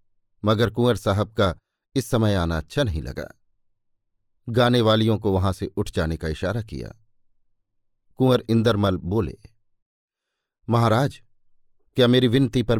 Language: Hindi